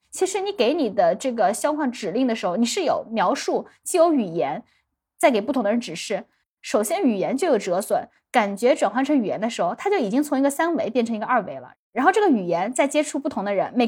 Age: 20-39